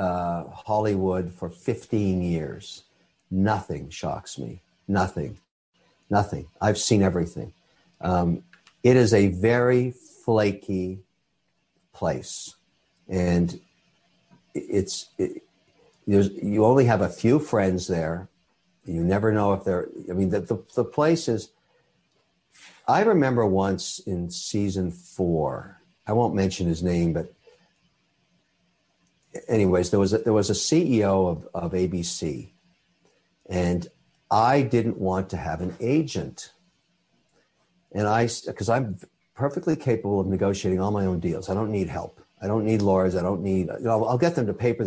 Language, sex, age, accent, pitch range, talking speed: English, male, 60-79, American, 90-115 Hz, 140 wpm